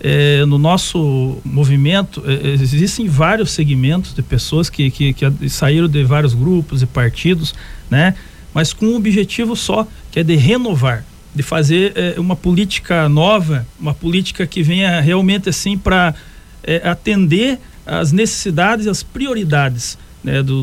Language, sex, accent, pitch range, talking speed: Portuguese, male, Brazilian, 145-205 Hz, 150 wpm